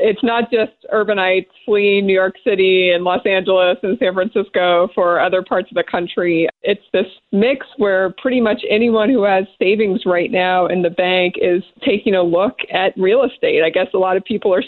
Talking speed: 200 wpm